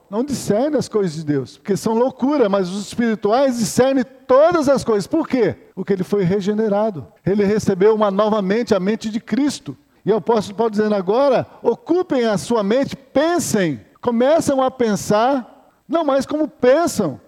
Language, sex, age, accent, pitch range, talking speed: Portuguese, male, 50-69, Brazilian, 210-265 Hz, 170 wpm